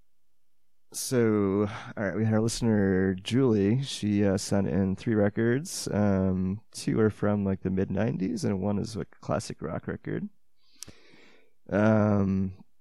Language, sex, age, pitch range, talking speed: English, male, 20-39, 95-115 Hz, 140 wpm